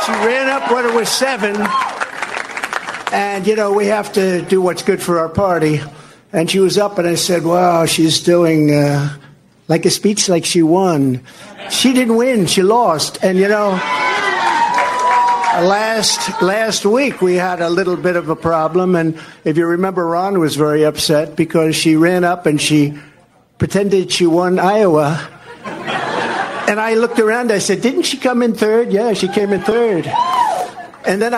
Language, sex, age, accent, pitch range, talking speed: English, male, 60-79, American, 175-220 Hz, 175 wpm